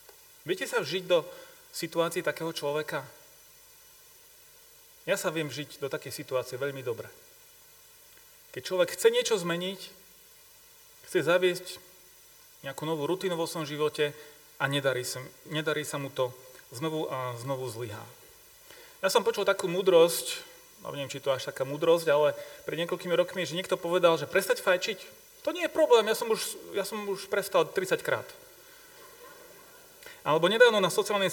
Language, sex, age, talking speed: Slovak, male, 30-49, 145 wpm